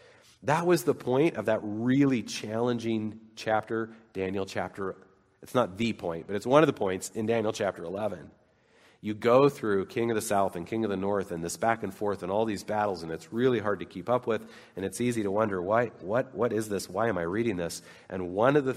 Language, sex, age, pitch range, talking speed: English, male, 40-59, 95-115 Hz, 235 wpm